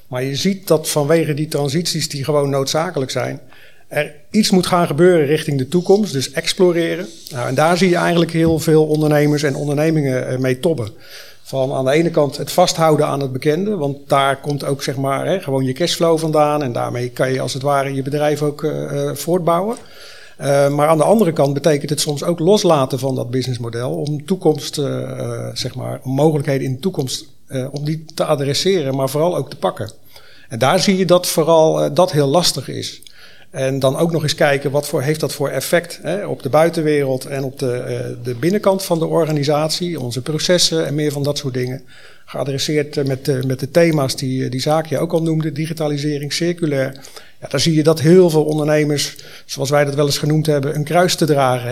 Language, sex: Dutch, male